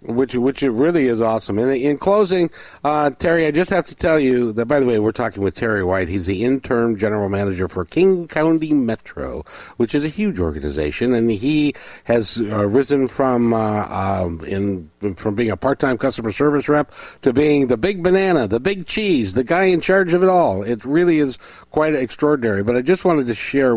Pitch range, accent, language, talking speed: 95-135 Hz, American, English, 210 wpm